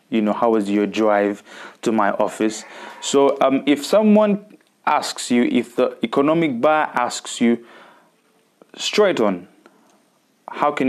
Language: English